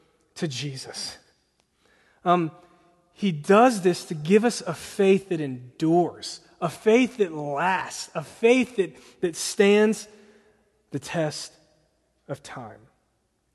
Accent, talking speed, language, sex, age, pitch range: American, 115 wpm, English, male, 30-49, 145-190 Hz